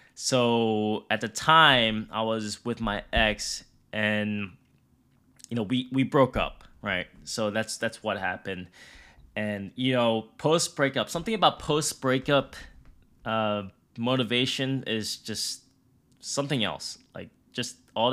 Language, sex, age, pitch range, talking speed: English, male, 10-29, 110-130 Hz, 125 wpm